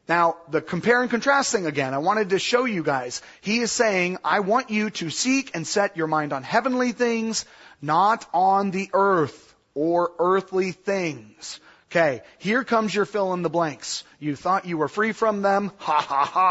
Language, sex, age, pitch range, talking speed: English, male, 30-49, 170-235 Hz, 175 wpm